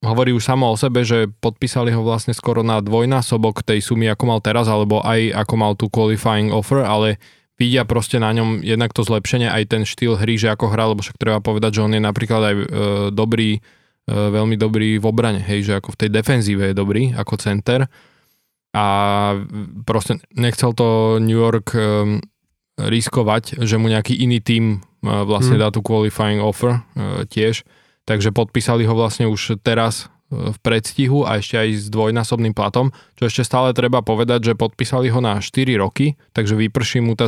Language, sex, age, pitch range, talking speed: Slovak, male, 20-39, 105-120 Hz, 175 wpm